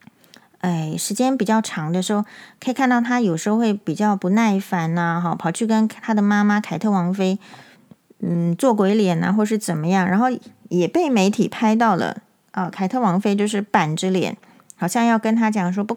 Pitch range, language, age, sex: 185-235 Hz, Chinese, 30-49, female